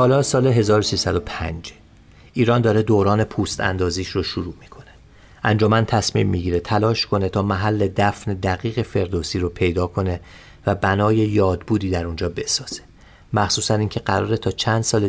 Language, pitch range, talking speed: Persian, 95-115 Hz, 145 wpm